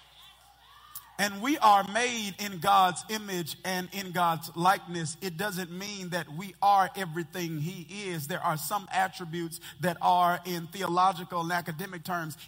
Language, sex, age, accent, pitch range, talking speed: English, male, 50-69, American, 150-195 Hz, 150 wpm